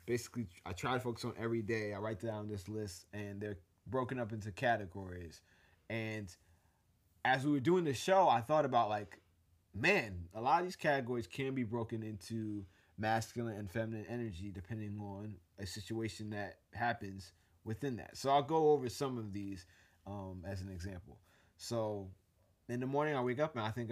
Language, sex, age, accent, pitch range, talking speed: English, male, 30-49, American, 100-130 Hz, 185 wpm